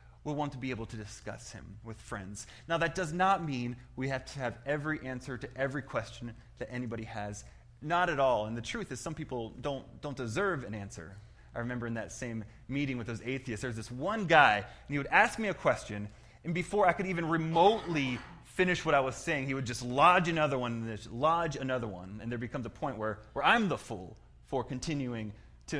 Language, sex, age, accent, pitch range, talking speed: English, male, 30-49, American, 115-150 Hz, 225 wpm